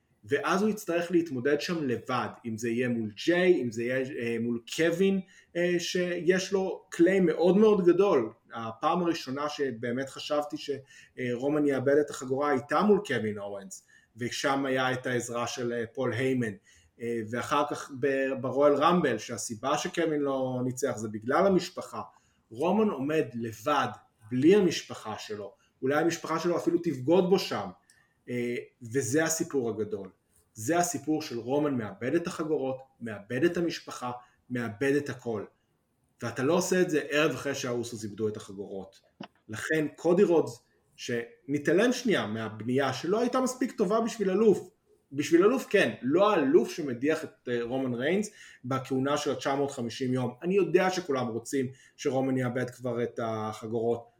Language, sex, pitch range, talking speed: Hebrew, male, 120-170 Hz, 140 wpm